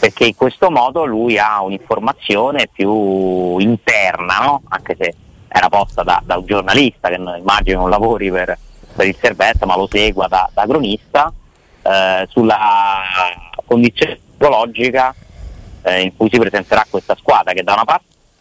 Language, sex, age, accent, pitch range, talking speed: Italian, male, 30-49, native, 95-120 Hz, 155 wpm